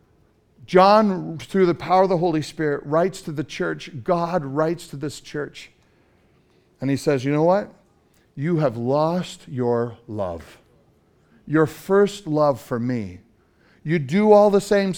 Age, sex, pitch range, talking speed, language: 50-69, male, 115-160 Hz, 150 wpm, English